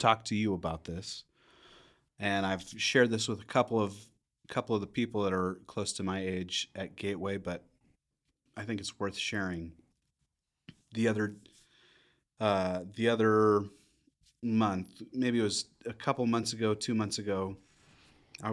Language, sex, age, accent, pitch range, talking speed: English, male, 30-49, American, 95-115 Hz, 155 wpm